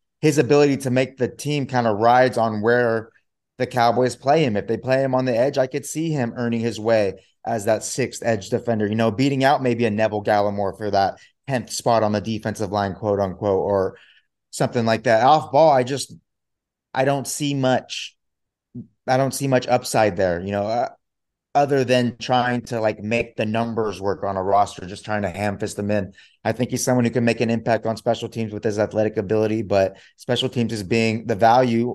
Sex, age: male, 30-49